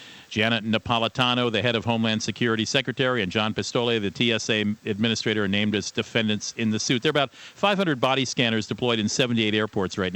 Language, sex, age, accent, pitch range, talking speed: English, male, 50-69, American, 115-150 Hz, 190 wpm